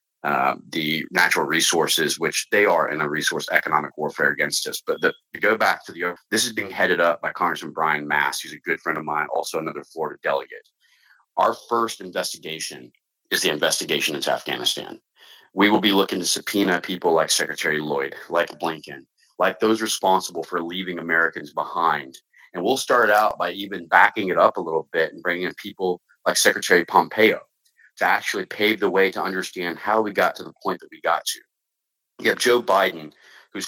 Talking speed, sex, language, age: 190 wpm, male, English, 30-49